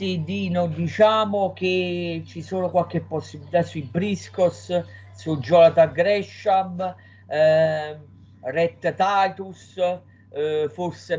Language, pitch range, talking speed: Italian, 135-170 Hz, 95 wpm